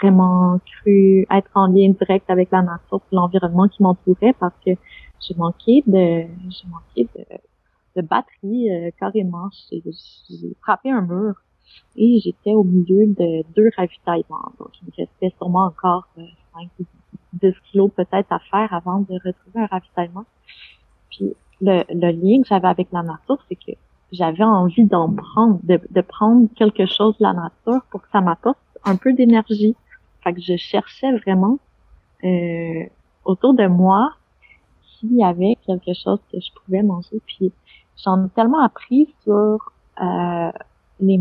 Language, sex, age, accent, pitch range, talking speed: French, female, 30-49, Canadian, 180-215 Hz, 160 wpm